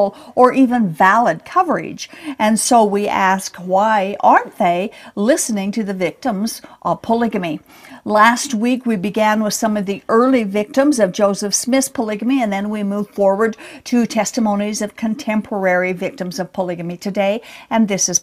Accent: American